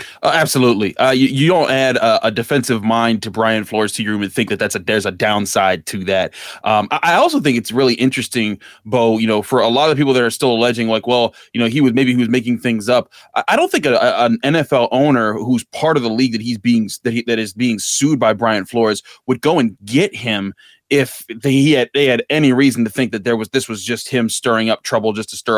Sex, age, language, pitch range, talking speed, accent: male, 20-39, English, 110-130 Hz, 255 wpm, American